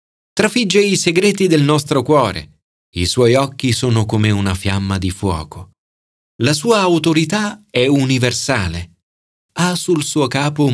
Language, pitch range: Italian, 105-160 Hz